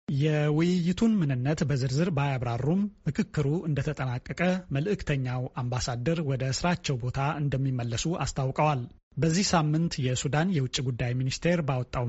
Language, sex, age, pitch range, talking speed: Amharic, male, 30-49, 130-165 Hz, 100 wpm